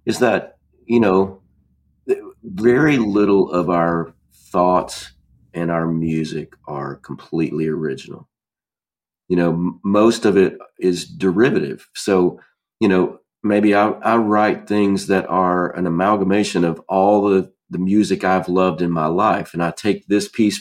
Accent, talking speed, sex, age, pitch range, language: American, 145 wpm, male, 40-59, 85-105 Hz, English